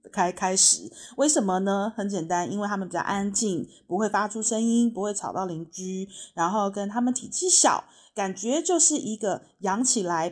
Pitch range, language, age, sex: 195-260 Hz, Chinese, 30-49, female